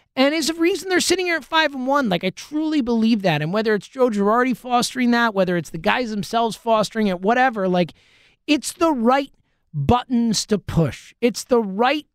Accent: American